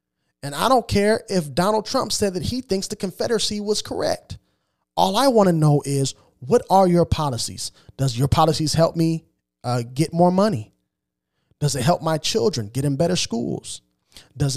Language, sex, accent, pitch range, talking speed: English, male, American, 115-175 Hz, 180 wpm